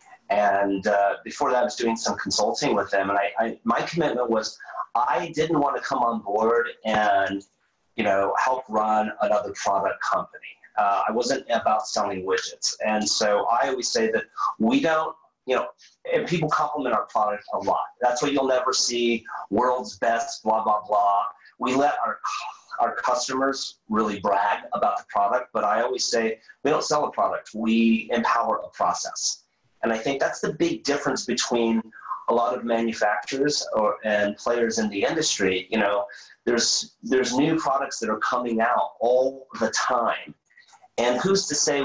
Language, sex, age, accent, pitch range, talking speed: English, male, 30-49, American, 105-130 Hz, 175 wpm